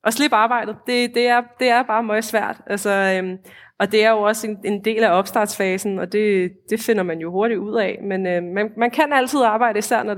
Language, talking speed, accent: Danish, 240 wpm, native